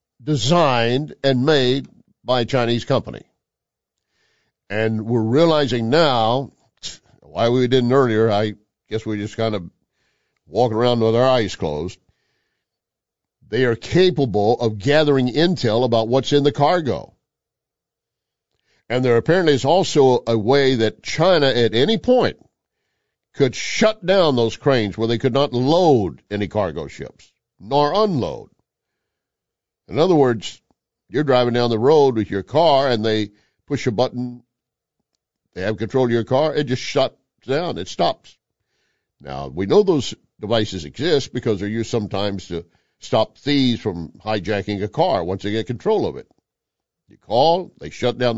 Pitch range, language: 110-140 Hz, English